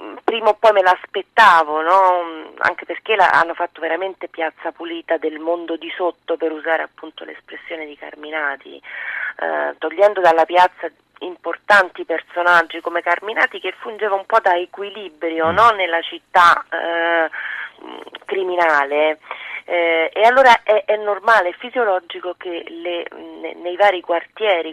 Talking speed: 135 wpm